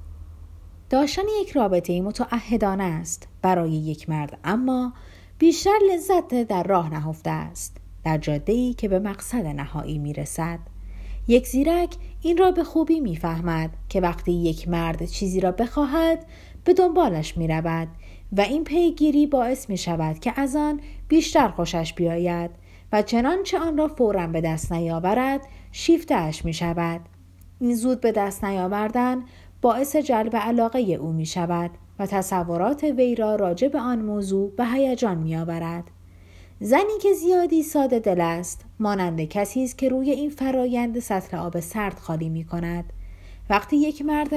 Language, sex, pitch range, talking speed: Persian, female, 165-265 Hz, 140 wpm